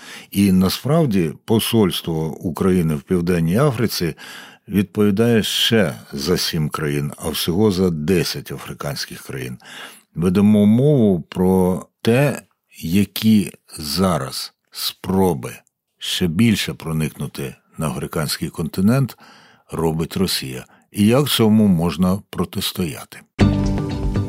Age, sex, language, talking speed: 60-79, male, Ukrainian, 95 wpm